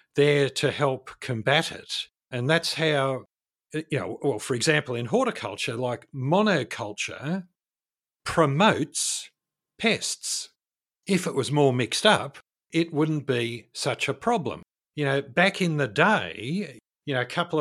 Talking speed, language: 140 wpm, English